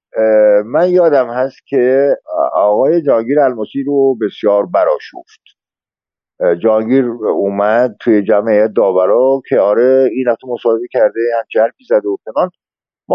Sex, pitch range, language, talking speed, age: male, 110-160 Hz, Persian, 125 wpm, 50-69